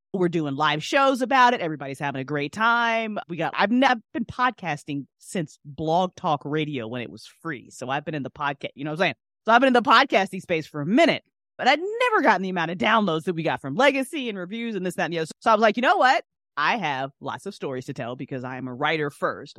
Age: 30-49